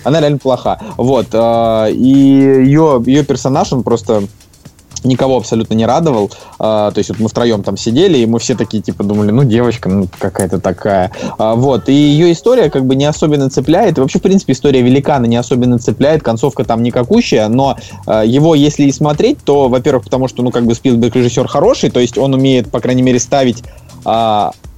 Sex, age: male, 20-39